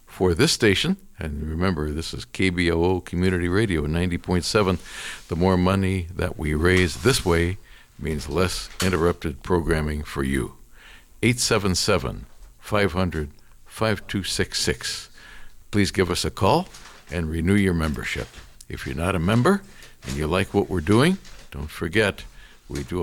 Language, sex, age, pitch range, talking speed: English, male, 60-79, 80-110 Hz, 130 wpm